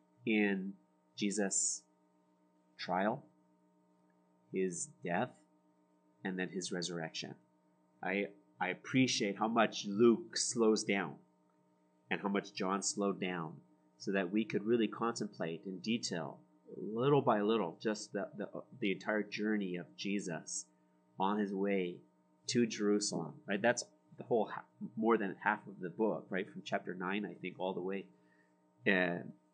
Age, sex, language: 30-49, male, English